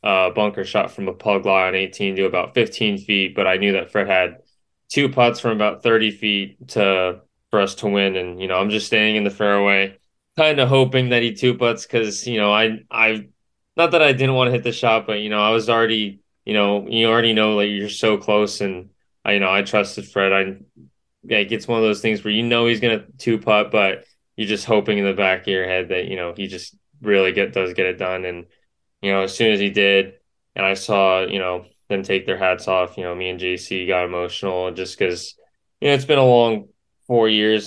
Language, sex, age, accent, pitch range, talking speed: English, male, 20-39, American, 90-110 Hz, 240 wpm